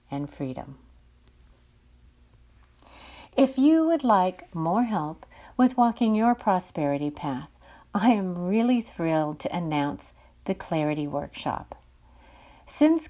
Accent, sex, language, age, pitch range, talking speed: American, female, English, 50-69, 145-220 Hz, 105 wpm